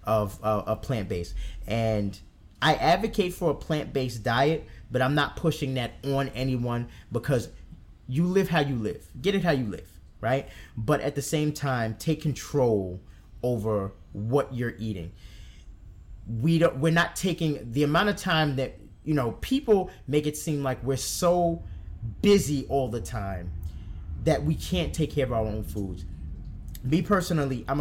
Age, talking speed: 30-49, 165 wpm